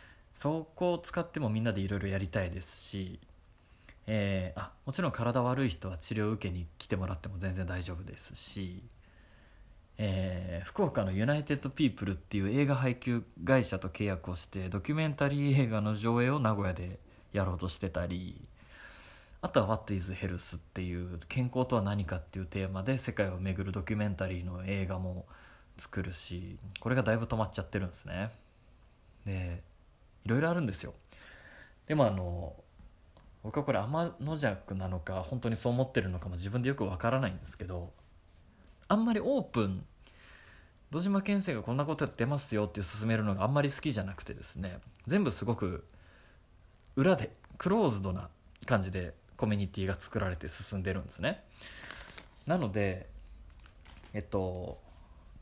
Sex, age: male, 20-39